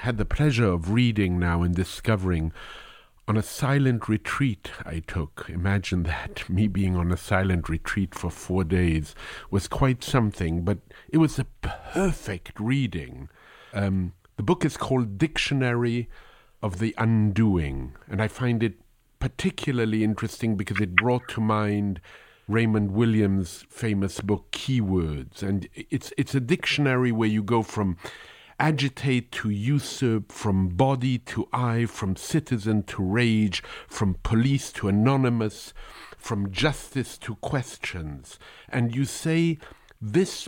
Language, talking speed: English, 135 wpm